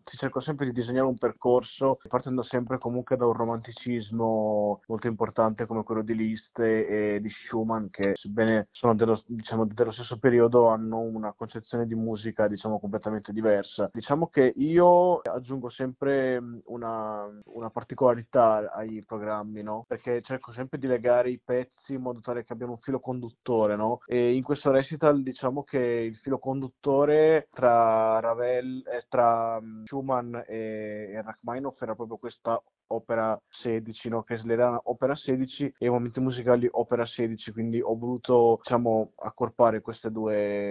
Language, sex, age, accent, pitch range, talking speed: Italian, male, 20-39, native, 110-125 Hz, 155 wpm